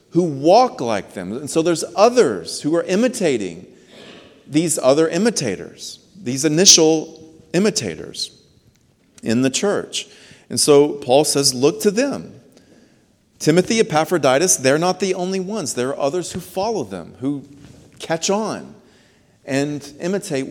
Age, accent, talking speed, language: 40-59, American, 130 wpm, English